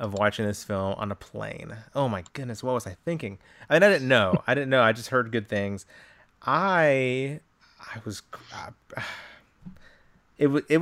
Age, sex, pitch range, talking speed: 30-49, male, 105-130 Hz, 190 wpm